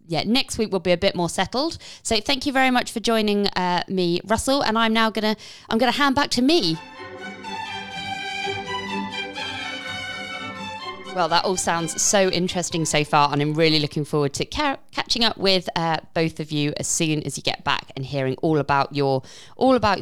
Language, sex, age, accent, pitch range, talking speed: English, female, 20-39, British, 150-185 Hz, 190 wpm